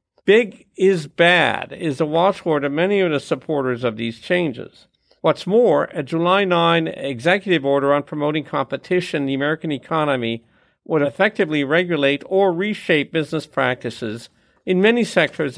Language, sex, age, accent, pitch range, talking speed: English, male, 50-69, American, 140-185 Hz, 145 wpm